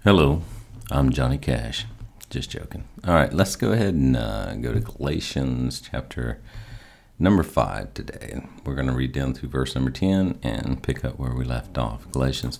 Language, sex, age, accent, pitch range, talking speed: English, male, 50-69, American, 65-95 Hz, 175 wpm